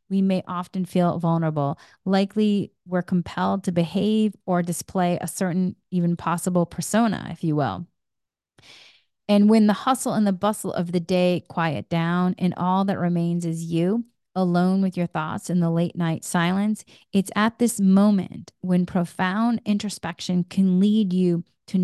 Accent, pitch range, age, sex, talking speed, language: American, 170-200 Hz, 30-49, female, 160 wpm, English